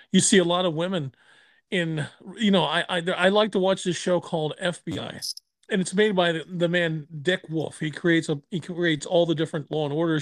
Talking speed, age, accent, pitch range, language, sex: 230 wpm, 40-59, American, 155-195 Hz, English, male